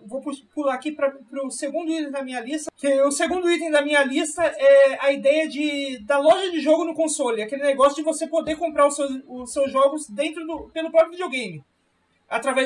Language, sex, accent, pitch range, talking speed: Portuguese, male, Brazilian, 255-310 Hz, 205 wpm